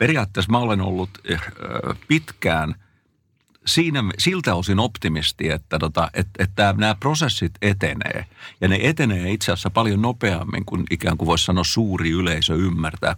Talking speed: 140 wpm